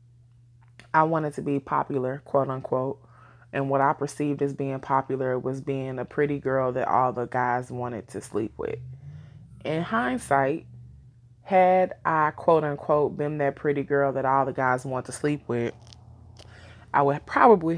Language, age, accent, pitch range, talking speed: English, 20-39, American, 120-145 Hz, 160 wpm